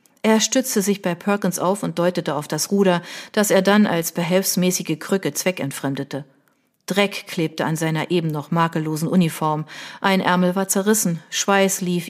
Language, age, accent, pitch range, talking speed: German, 40-59, German, 160-205 Hz, 160 wpm